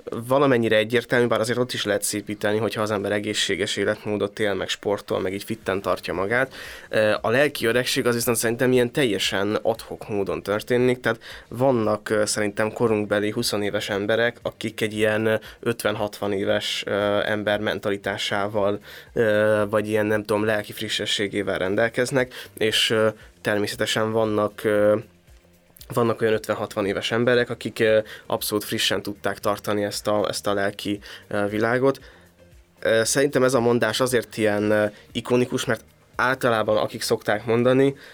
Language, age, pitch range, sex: Hungarian, 20-39, 105-115 Hz, male